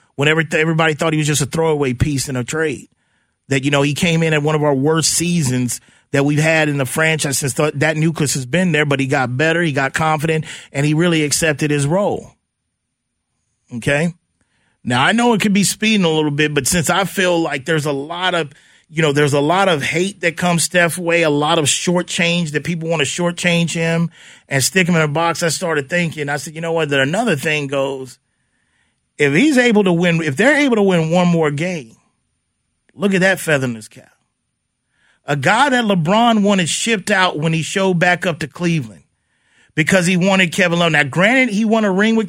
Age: 30-49